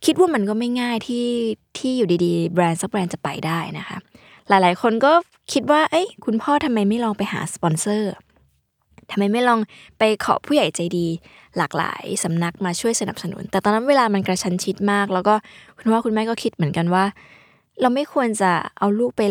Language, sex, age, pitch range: Thai, female, 20-39, 180-225 Hz